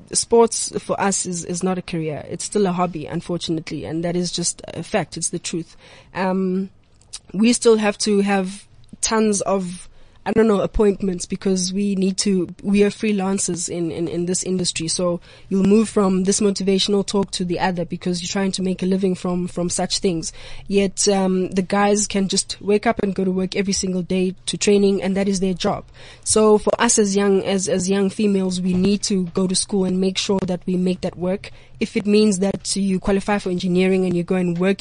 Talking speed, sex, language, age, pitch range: 215 wpm, female, English, 20-39, 180-200 Hz